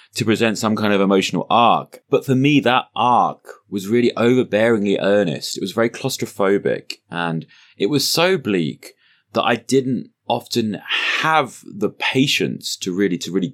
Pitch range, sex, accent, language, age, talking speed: 95-125 Hz, male, British, English, 20-39, 160 wpm